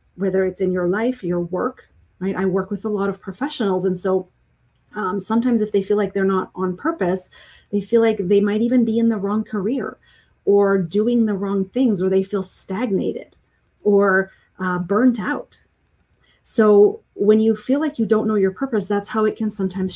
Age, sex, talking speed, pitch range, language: 30-49, female, 200 wpm, 190-225 Hz, English